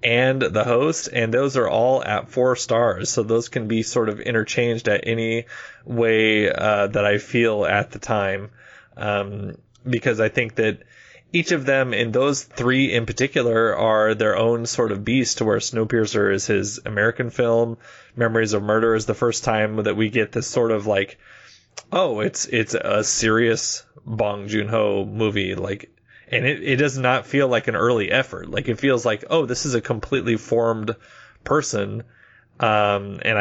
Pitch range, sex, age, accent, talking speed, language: 105-125 Hz, male, 20-39, American, 180 wpm, English